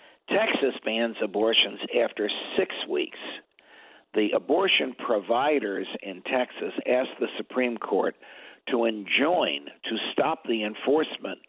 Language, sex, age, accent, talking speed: English, male, 60-79, American, 110 wpm